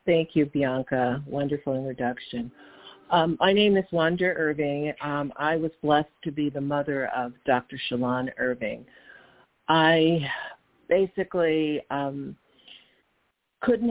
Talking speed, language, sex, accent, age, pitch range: 115 wpm, English, female, American, 50-69, 140-165 Hz